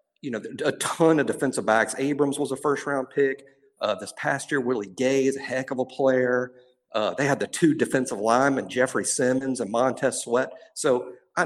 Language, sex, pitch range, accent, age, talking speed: English, male, 130-150 Hz, American, 50-69, 200 wpm